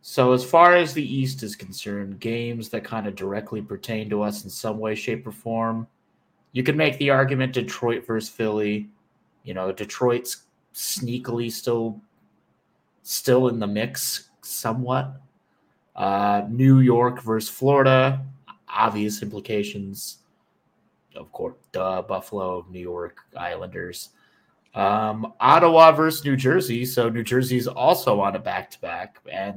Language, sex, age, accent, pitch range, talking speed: English, male, 30-49, American, 105-130 Hz, 135 wpm